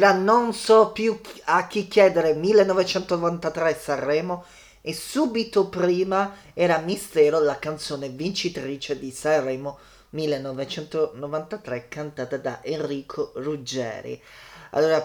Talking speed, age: 100 wpm, 20-39